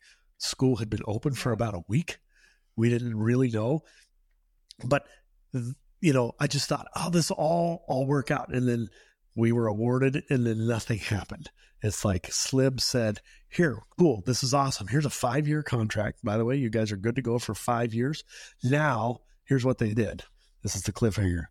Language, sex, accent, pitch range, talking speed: English, male, American, 115-150 Hz, 185 wpm